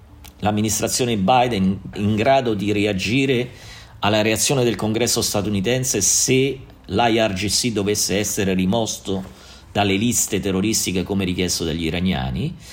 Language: Italian